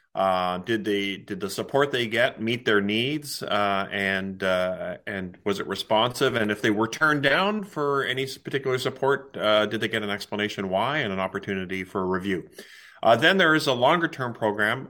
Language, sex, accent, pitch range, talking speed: English, male, American, 95-125 Hz, 195 wpm